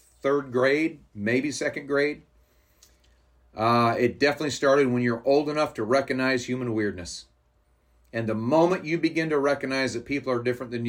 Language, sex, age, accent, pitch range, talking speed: English, male, 40-59, American, 95-130 Hz, 160 wpm